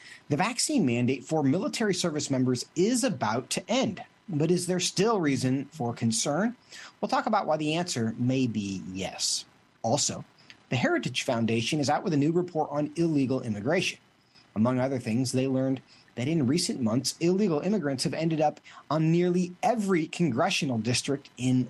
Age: 40-59